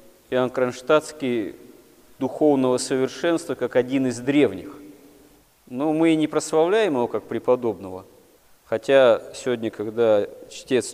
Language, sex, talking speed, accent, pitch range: Russian, male, 110 wpm, native, 115-150 Hz